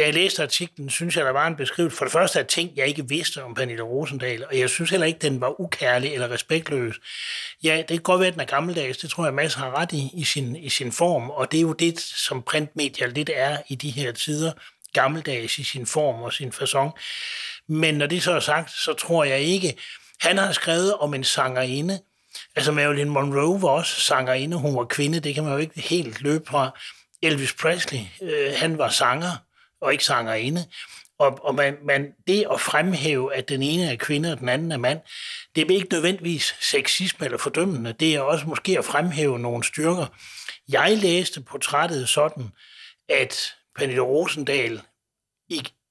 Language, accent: Danish, native